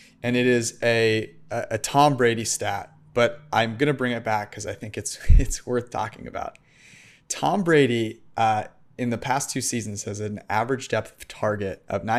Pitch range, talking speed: 105-125 Hz, 190 wpm